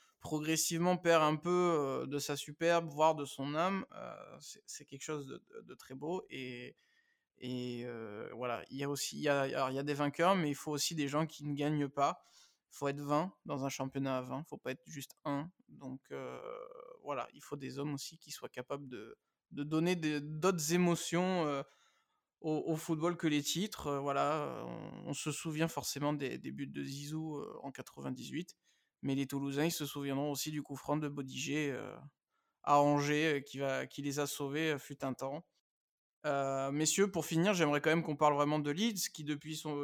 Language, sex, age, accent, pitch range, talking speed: French, male, 20-39, French, 140-165 Hz, 190 wpm